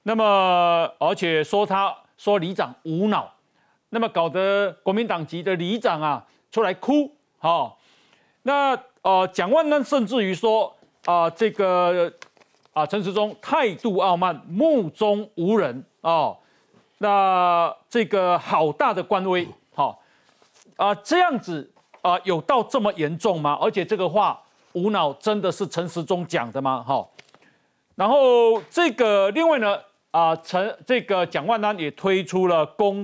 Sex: male